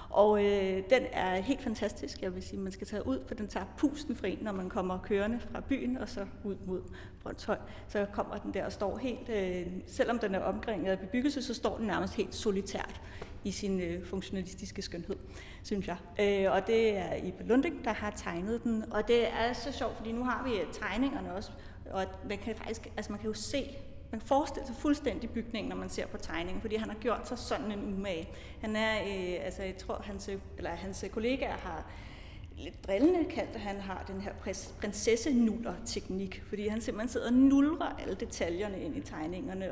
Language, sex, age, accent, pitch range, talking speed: Danish, female, 30-49, native, 195-240 Hz, 200 wpm